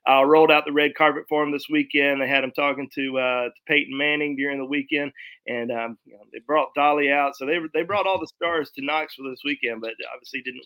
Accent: American